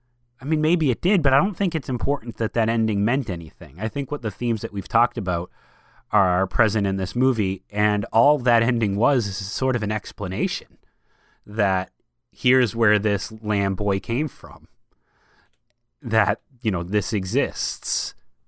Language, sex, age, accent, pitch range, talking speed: English, male, 30-49, American, 105-125 Hz, 170 wpm